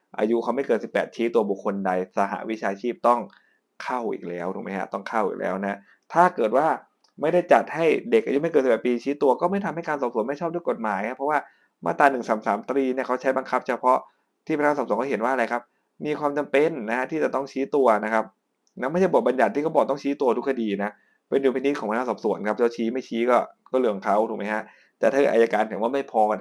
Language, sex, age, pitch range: Thai, male, 20-39, 105-135 Hz